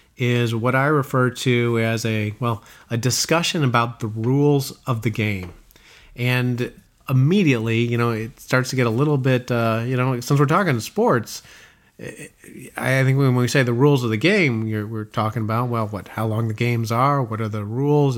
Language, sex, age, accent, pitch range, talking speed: English, male, 30-49, American, 115-135 Hz, 195 wpm